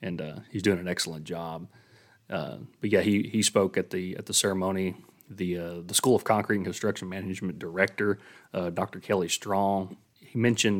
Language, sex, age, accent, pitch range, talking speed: English, male, 30-49, American, 90-105 Hz, 190 wpm